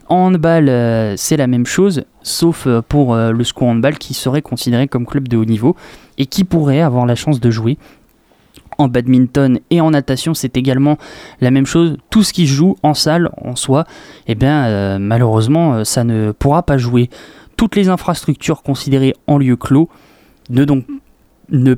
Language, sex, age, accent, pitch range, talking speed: French, male, 20-39, French, 130-170 Hz, 175 wpm